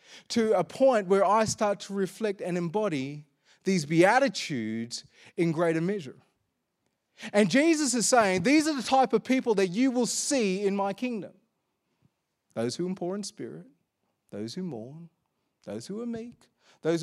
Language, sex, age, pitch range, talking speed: English, male, 30-49, 160-220 Hz, 160 wpm